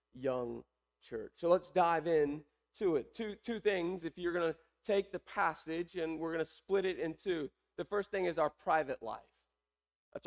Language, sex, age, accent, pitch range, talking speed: English, male, 40-59, American, 140-195 Hz, 200 wpm